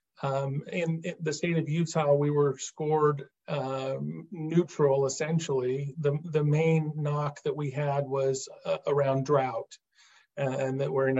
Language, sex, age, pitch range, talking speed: English, male, 40-59, 135-150 Hz, 145 wpm